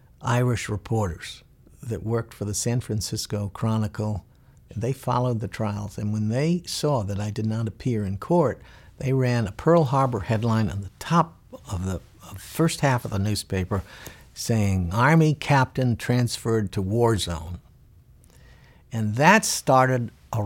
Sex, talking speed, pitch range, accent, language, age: male, 150 wpm, 100-130 Hz, American, English, 60-79